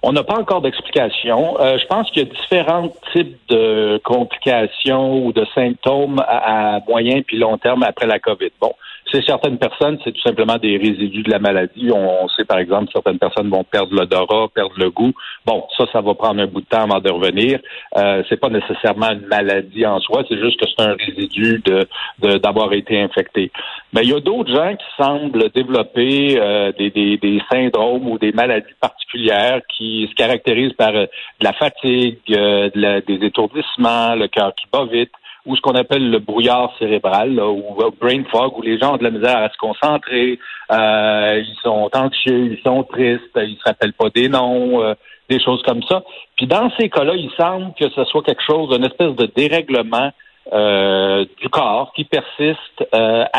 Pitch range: 105-130 Hz